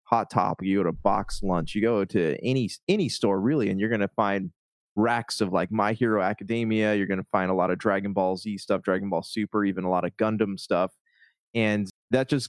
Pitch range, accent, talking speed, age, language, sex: 95-115 Hz, American, 220 wpm, 20-39, English, male